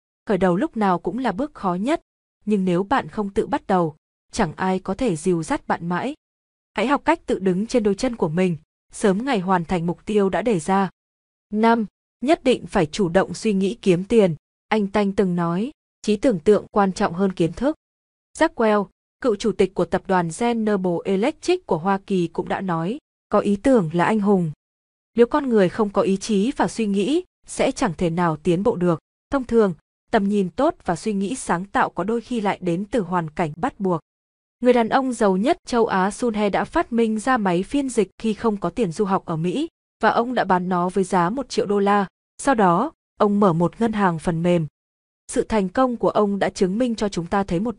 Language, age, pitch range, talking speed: Vietnamese, 20-39, 180-230 Hz, 225 wpm